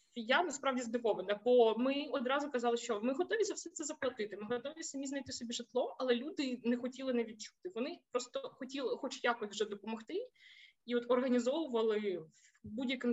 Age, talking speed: 20-39, 170 wpm